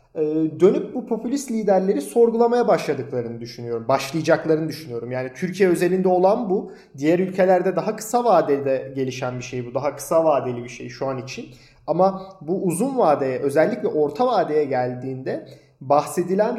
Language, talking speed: Turkish, 145 wpm